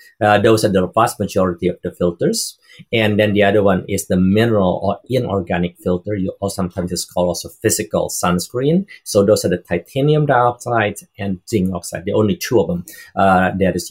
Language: English